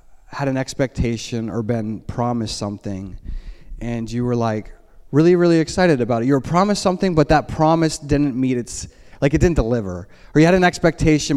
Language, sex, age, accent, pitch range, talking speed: English, male, 20-39, American, 125-160 Hz, 185 wpm